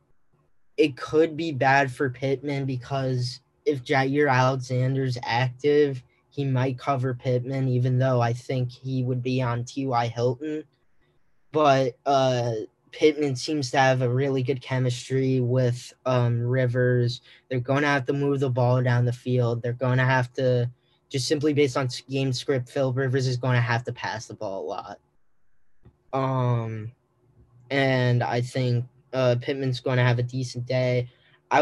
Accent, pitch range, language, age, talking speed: American, 125-140 Hz, English, 10-29, 160 wpm